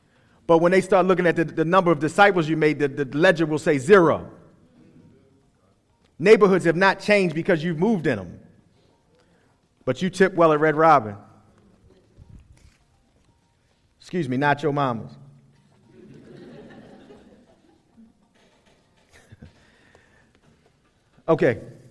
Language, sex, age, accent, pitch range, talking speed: English, male, 40-59, American, 145-195 Hz, 110 wpm